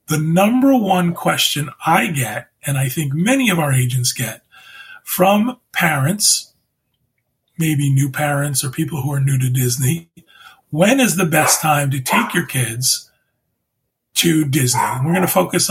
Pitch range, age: 135-180 Hz, 30-49